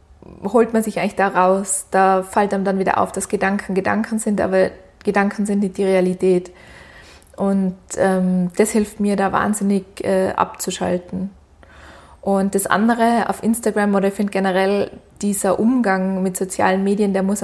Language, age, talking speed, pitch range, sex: German, 20-39, 160 wpm, 190-210 Hz, female